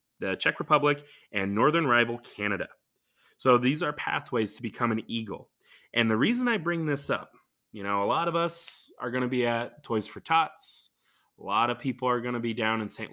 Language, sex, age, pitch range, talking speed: English, male, 20-39, 110-145 Hz, 215 wpm